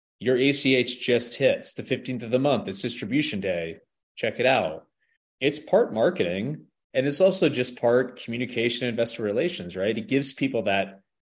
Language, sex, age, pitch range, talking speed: English, male, 30-49, 100-125 Hz, 170 wpm